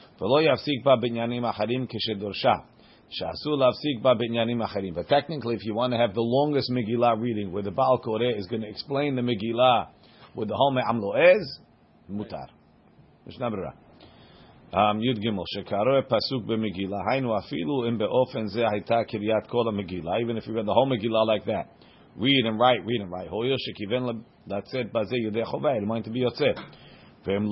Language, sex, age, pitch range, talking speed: English, male, 40-59, 110-130 Hz, 95 wpm